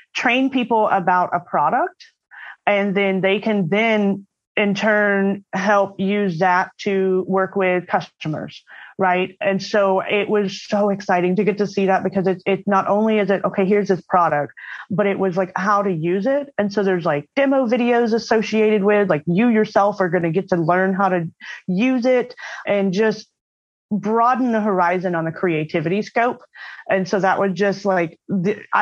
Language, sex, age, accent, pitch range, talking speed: English, female, 30-49, American, 180-215 Hz, 180 wpm